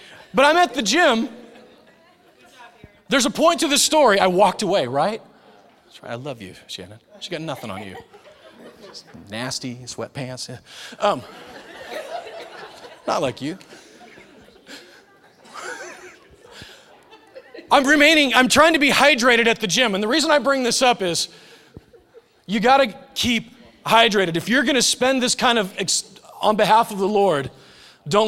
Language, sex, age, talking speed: English, male, 30-49, 145 wpm